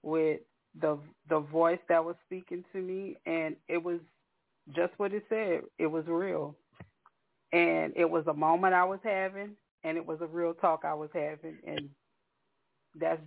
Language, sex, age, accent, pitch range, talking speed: English, female, 40-59, American, 160-180 Hz, 170 wpm